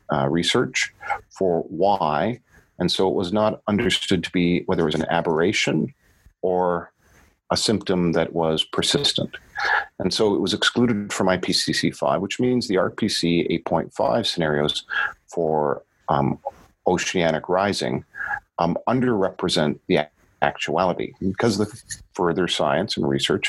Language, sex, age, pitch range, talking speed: English, male, 40-59, 80-95 Hz, 130 wpm